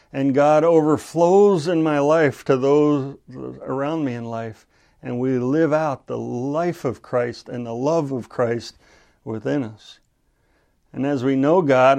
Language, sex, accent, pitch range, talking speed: English, male, American, 125-155 Hz, 160 wpm